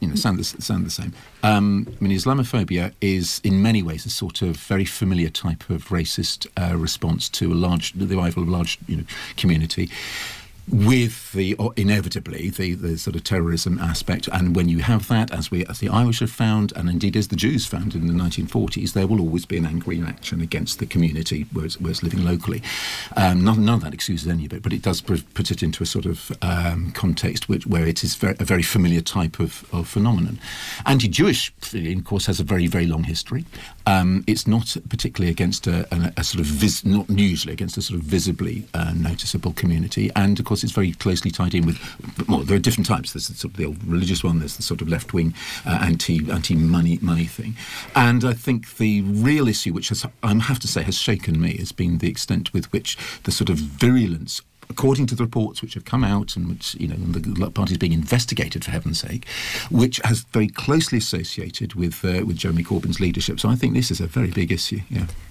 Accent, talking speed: British, 225 wpm